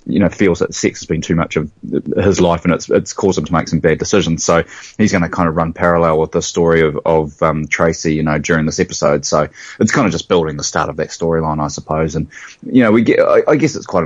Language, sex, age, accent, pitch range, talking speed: English, male, 20-39, Australian, 80-90 Hz, 275 wpm